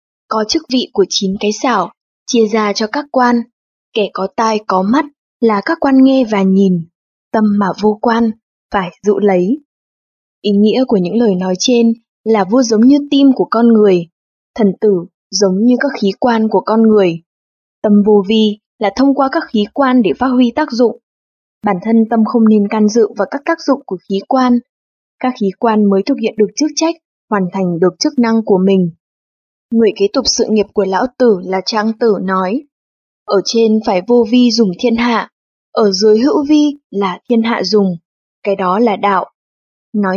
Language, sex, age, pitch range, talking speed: English, female, 20-39, 200-255 Hz, 195 wpm